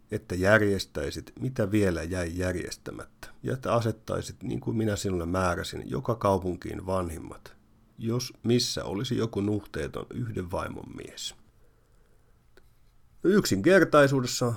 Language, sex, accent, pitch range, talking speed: Finnish, male, native, 95-120 Hz, 105 wpm